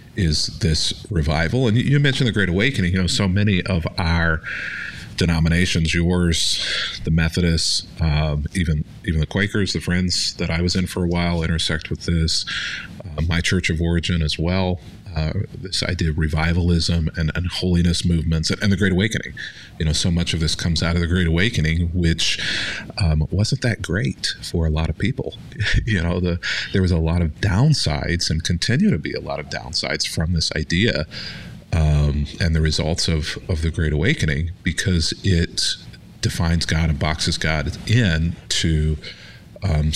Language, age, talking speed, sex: English, 40-59, 165 wpm, male